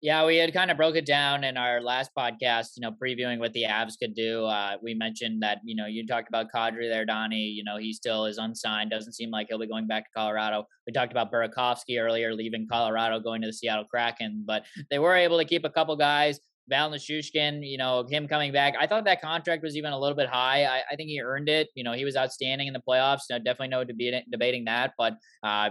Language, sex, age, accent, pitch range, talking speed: English, male, 10-29, American, 115-140 Hz, 250 wpm